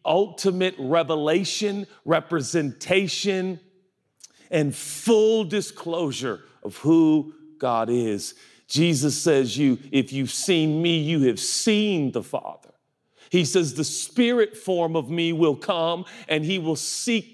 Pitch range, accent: 165-230 Hz, American